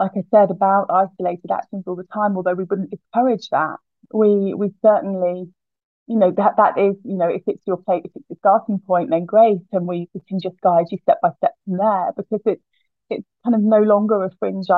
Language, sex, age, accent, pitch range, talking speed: English, female, 20-39, British, 180-215 Hz, 225 wpm